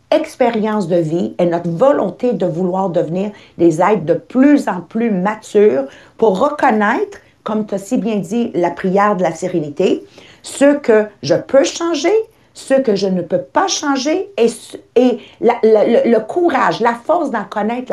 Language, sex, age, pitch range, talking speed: English, female, 50-69, 190-265 Hz, 175 wpm